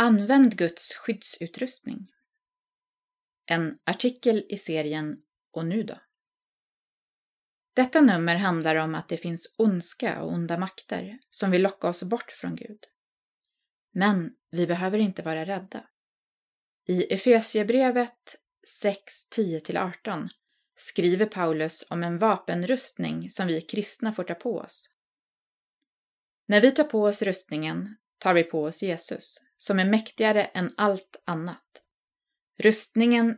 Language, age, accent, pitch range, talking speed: Swedish, 20-39, native, 175-245 Hz, 120 wpm